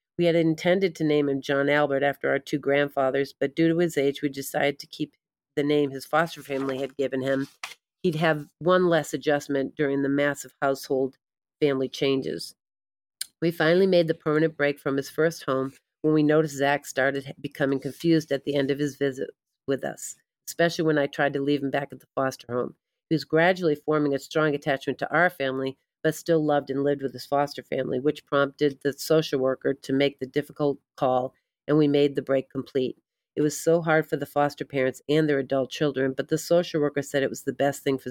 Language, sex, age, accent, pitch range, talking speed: English, female, 40-59, American, 135-155 Hz, 215 wpm